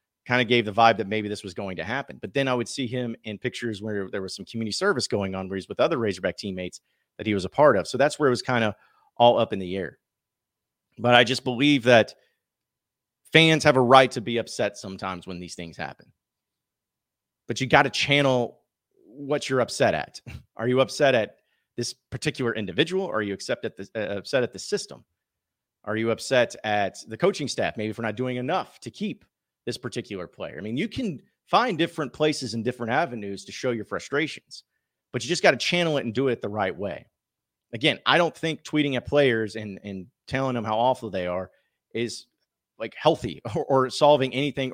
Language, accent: English, American